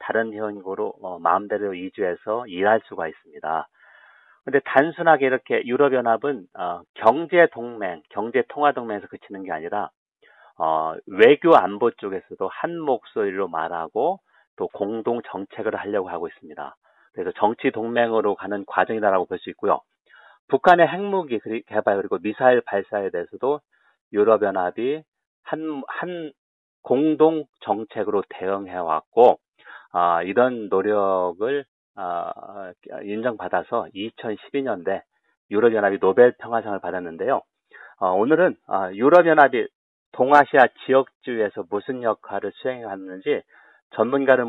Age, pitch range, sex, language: 40-59, 100-145 Hz, male, Korean